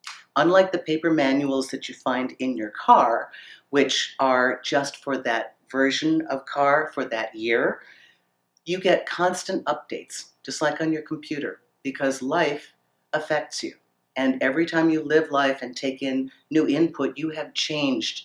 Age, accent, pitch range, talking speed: 50-69, American, 130-165 Hz, 160 wpm